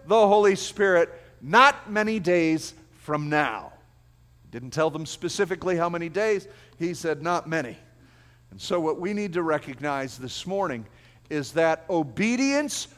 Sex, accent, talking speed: male, American, 150 wpm